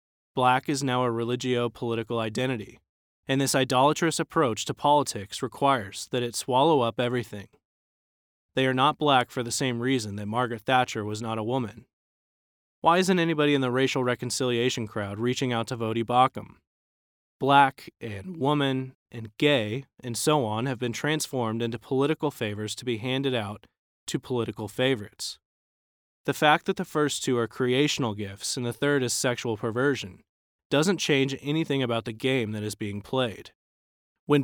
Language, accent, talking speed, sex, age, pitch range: English, American, 160 wpm, male, 20-39, 110-140 Hz